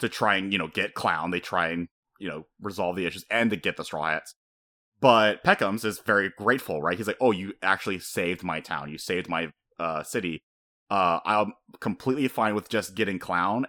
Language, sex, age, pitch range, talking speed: English, male, 30-49, 80-120 Hz, 210 wpm